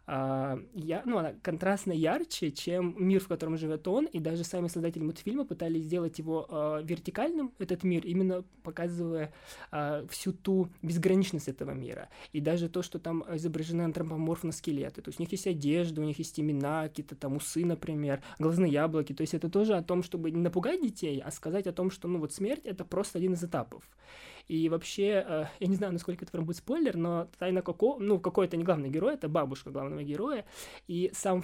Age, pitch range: 20-39, 150-185 Hz